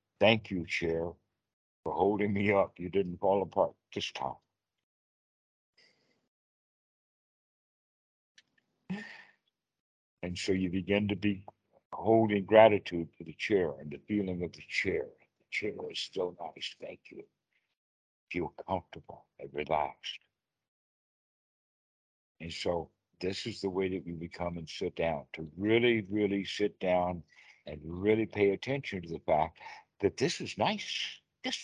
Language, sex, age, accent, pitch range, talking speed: English, male, 60-79, American, 95-125 Hz, 135 wpm